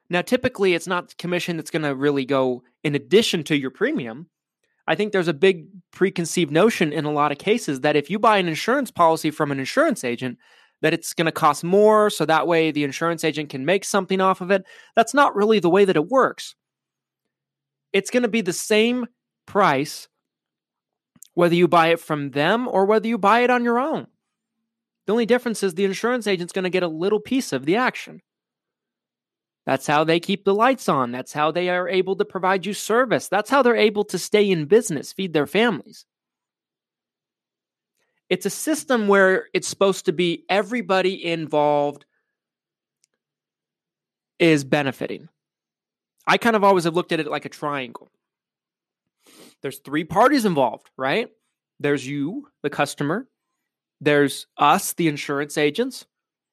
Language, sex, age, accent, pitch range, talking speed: English, male, 30-49, American, 155-210 Hz, 175 wpm